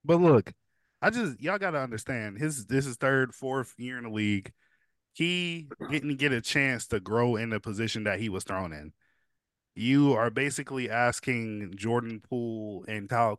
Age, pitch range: 20-39, 110-145 Hz